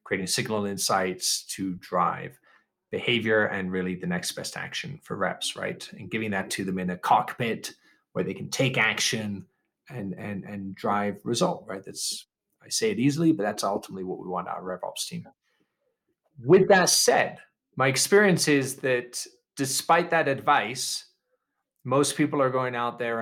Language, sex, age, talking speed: English, male, 30-49, 165 wpm